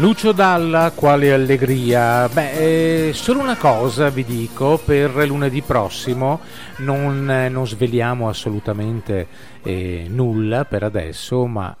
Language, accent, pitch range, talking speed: Italian, native, 105-140 Hz, 120 wpm